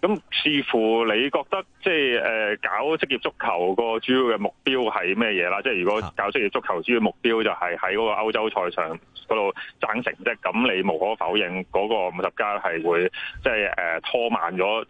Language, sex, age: Chinese, male, 30-49